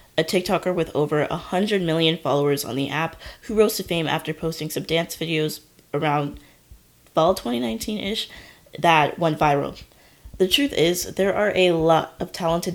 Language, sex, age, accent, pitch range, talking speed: English, female, 20-39, American, 150-180 Hz, 165 wpm